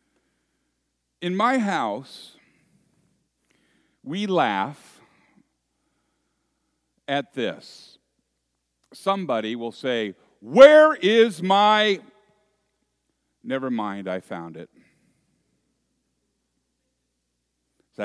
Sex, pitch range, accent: male, 115-180 Hz, American